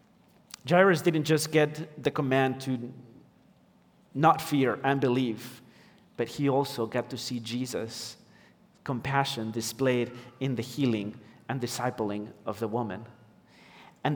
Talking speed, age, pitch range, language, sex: 125 wpm, 40-59, 125-155 Hz, English, male